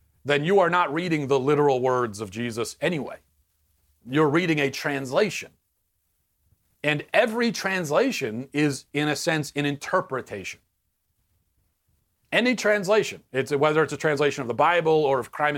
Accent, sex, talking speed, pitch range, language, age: American, male, 140 wpm, 110-145 Hz, English, 40-59